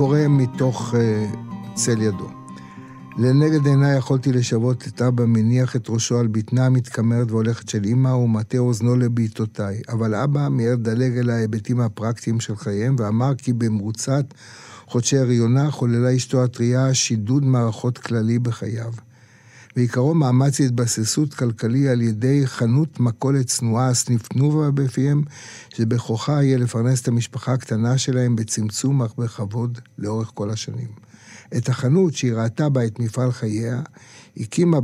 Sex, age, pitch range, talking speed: male, 60-79, 115-130 Hz, 130 wpm